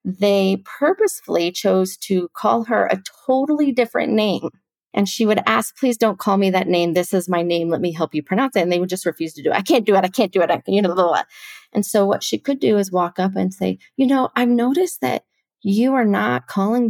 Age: 30-49